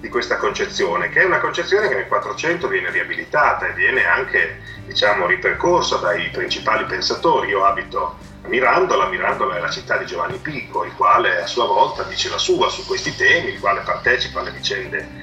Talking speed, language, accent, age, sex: 185 wpm, Italian, native, 30-49, male